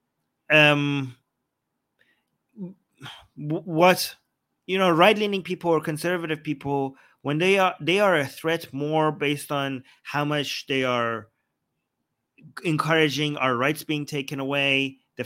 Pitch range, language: 120-150 Hz, English